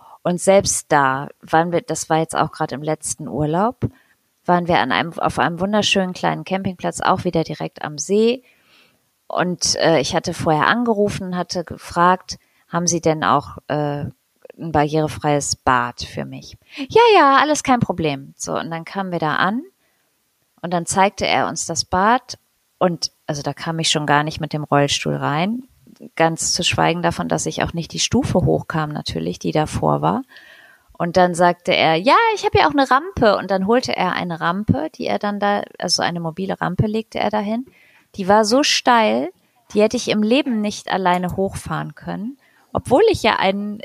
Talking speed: 185 wpm